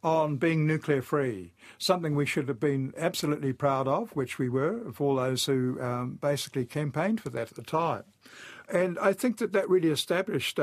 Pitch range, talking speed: 130-160 Hz, 190 wpm